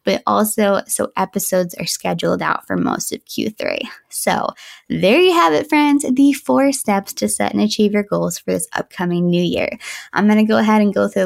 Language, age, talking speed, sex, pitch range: English, 20-39, 205 wpm, female, 195-275 Hz